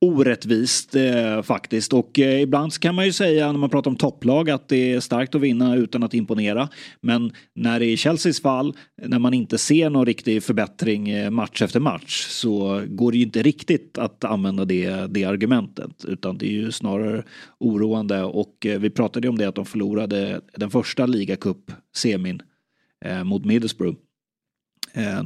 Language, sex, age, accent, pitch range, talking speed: Swedish, male, 30-49, native, 110-140 Hz, 180 wpm